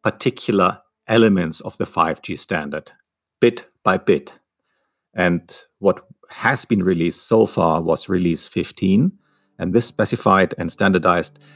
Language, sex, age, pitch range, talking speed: English, male, 50-69, 85-135 Hz, 125 wpm